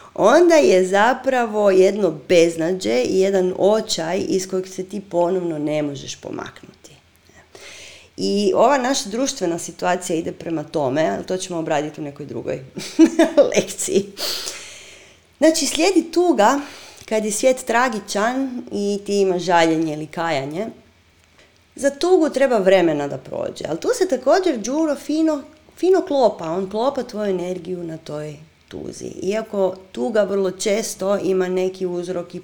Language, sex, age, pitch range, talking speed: Croatian, female, 30-49, 175-260 Hz, 135 wpm